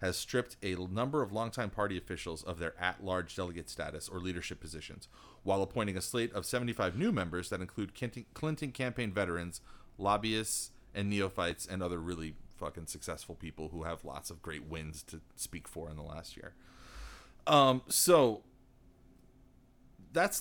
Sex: male